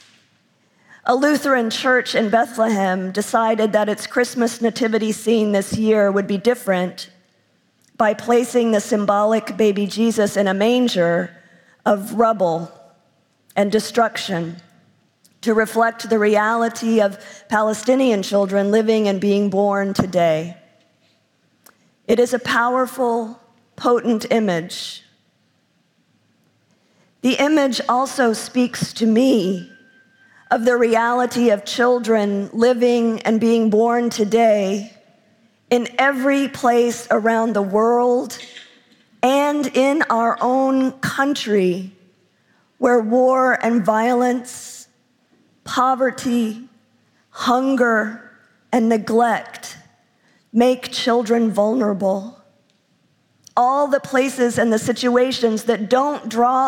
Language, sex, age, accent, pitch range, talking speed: English, female, 50-69, American, 205-245 Hz, 100 wpm